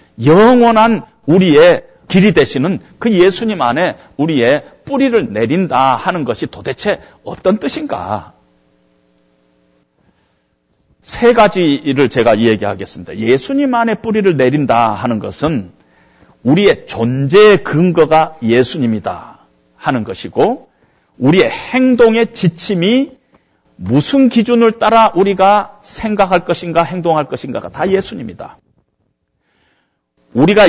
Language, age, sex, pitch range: Korean, 40-59, male, 150-230 Hz